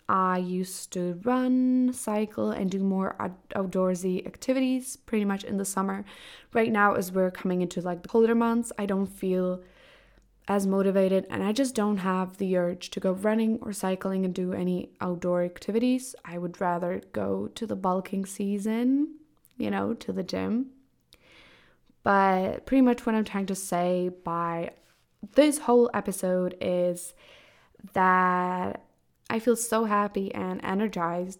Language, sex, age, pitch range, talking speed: English, female, 10-29, 180-225 Hz, 155 wpm